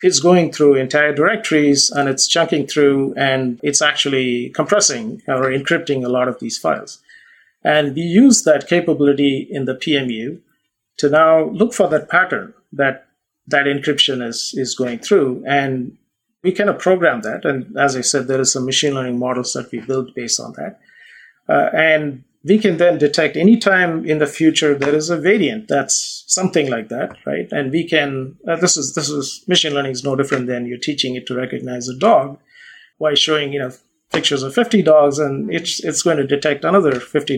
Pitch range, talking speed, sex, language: 135-160 Hz, 195 wpm, male, English